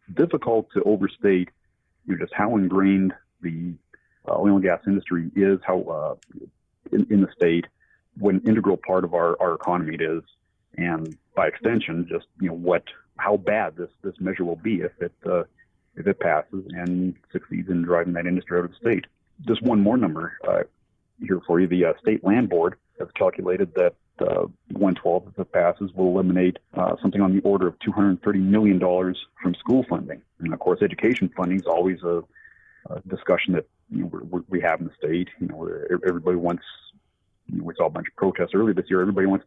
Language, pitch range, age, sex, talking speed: English, 90-100 Hz, 50-69, male, 200 wpm